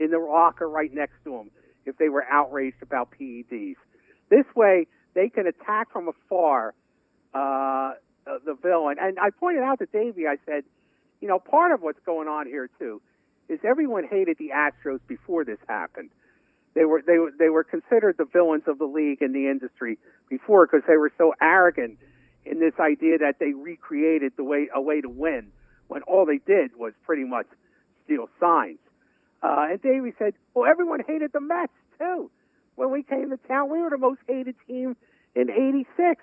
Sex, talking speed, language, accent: male, 185 wpm, English, American